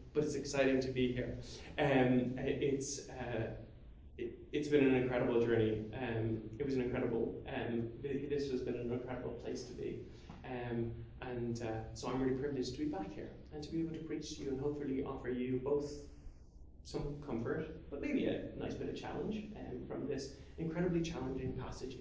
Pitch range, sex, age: 115-155 Hz, male, 30-49